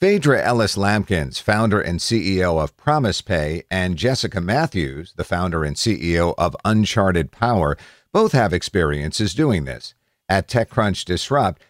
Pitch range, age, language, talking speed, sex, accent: 90-120 Hz, 50-69, English, 140 wpm, male, American